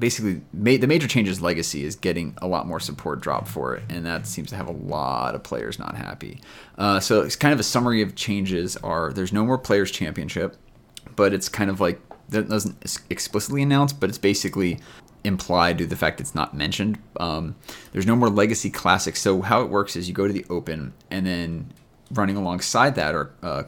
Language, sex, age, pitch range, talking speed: English, male, 30-49, 85-110 Hz, 210 wpm